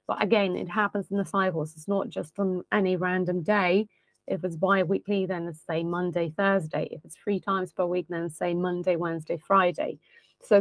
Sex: female